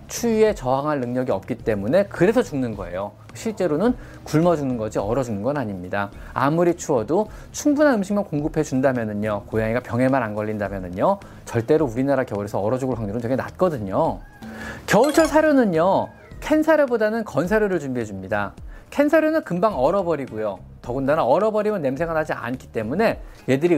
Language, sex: Korean, male